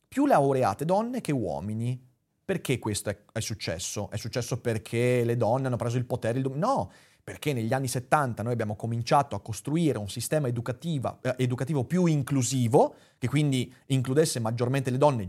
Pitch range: 115-155 Hz